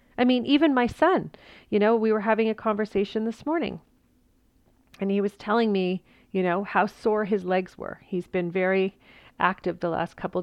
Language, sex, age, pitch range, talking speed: English, female, 40-59, 175-205 Hz, 190 wpm